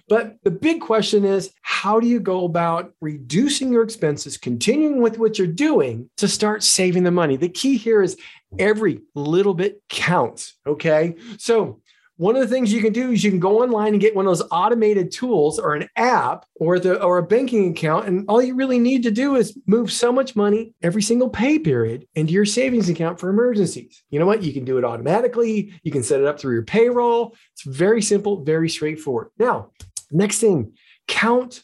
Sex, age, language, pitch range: male, 40-59, English, 185-235 Hz